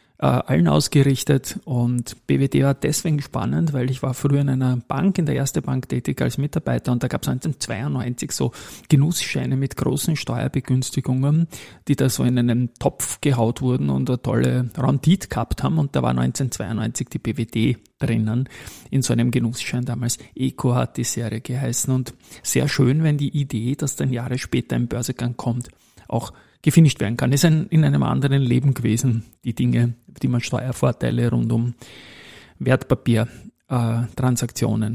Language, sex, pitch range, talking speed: German, male, 120-145 Hz, 165 wpm